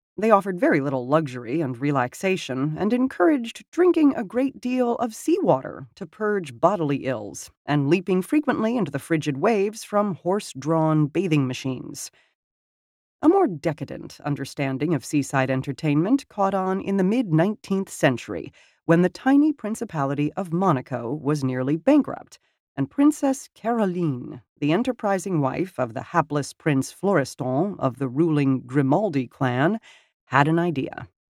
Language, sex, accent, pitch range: English, female, American, 135-205 Hz